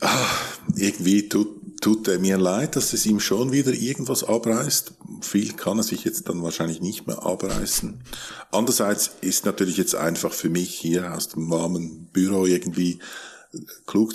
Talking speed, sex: 160 wpm, male